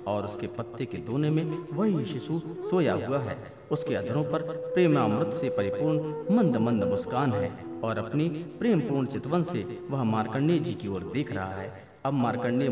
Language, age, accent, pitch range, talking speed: Hindi, 50-69, native, 125-170 Hz, 170 wpm